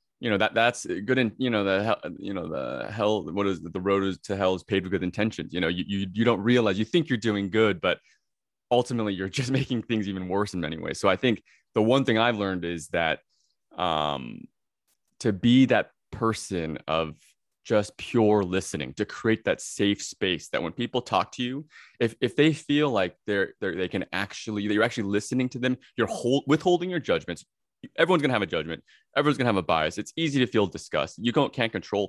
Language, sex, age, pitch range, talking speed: English, male, 20-39, 95-125 Hz, 225 wpm